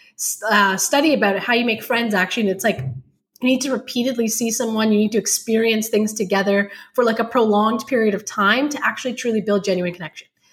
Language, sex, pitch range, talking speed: English, female, 200-255 Hz, 210 wpm